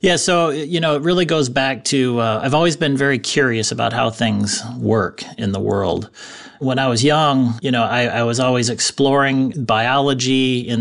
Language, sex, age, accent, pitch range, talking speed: English, male, 30-49, American, 115-140 Hz, 195 wpm